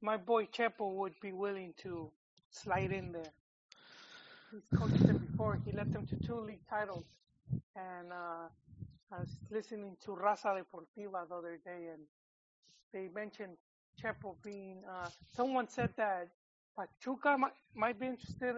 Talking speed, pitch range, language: 150 wpm, 185-225 Hz, English